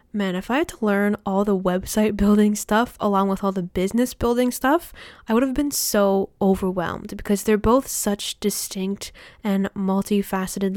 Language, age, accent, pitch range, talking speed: English, 10-29, American, 200-235 Hz, 175 wpm